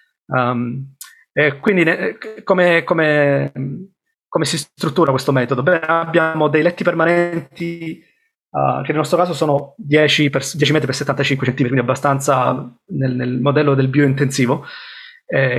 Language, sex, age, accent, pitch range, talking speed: Italian, male, 30-49, native, 135-165 Hz, 140 wpm